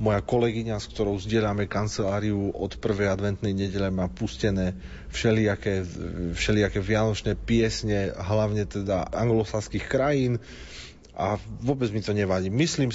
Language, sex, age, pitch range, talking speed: Slovak, male, 30-49, 100-115 Hz, 120 wpm